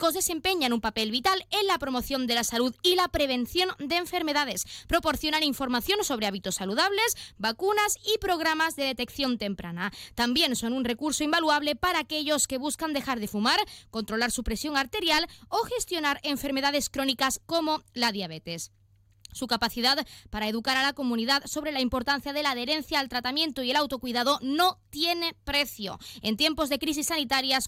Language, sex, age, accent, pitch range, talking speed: Spanish, female, 20-39, Spanish, 235-315 Hz, 165 wpm